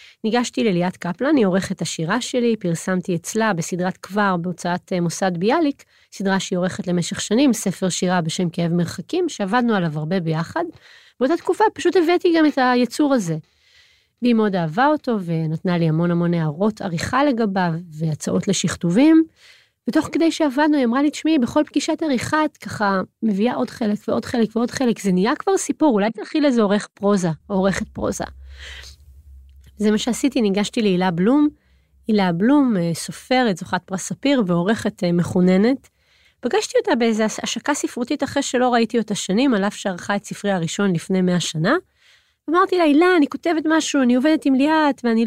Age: 30-49